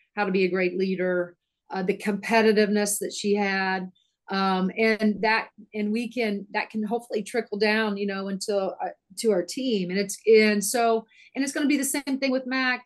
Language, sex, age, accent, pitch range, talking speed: English, female, 40-59, American, 185-220 Hz, 200 wpm